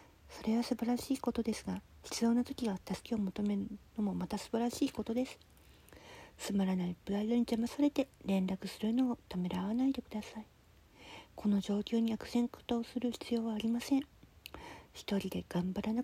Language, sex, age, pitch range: Japanese, female, 40-59, 190-230 Hz